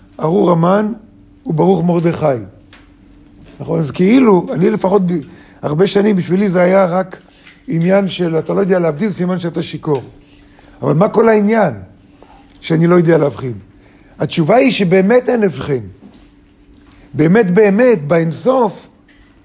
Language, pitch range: Hebrew, 145-205 Hz